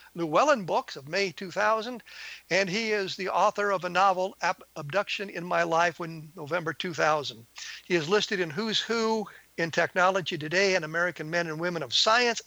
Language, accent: English, American